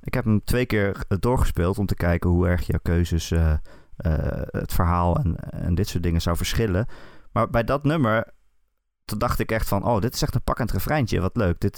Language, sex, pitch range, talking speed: Dutch, male, 85-110 Hz, 220 wpm